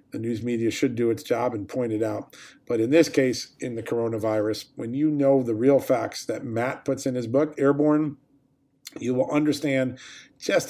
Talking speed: 195 wpm